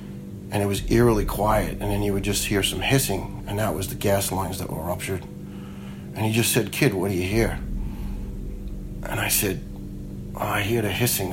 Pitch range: 90-105 Hz